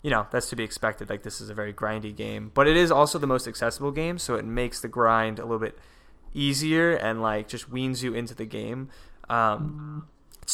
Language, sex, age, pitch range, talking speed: English, male, 20-39, 110-145 Hz, 230 wpm